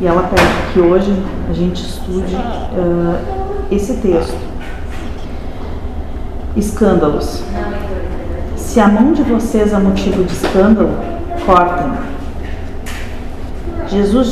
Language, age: Portuguese, 40-59